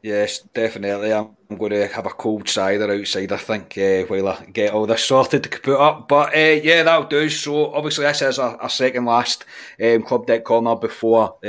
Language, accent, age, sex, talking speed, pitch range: English, British, 30-49, male, 210 wpm, 110-135 Hz